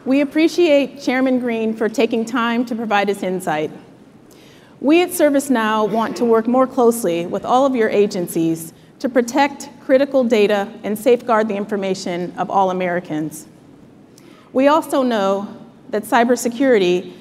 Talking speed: 140 wpm